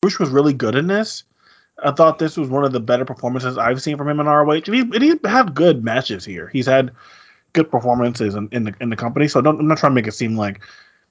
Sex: male